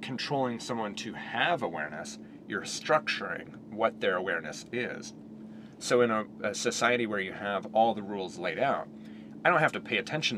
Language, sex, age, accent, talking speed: English, male, 30-49, American, 175 wpm